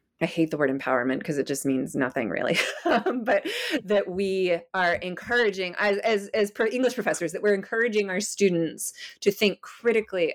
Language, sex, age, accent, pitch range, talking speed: English, female, 30-49, American, 155-195 Hz, 170 wpm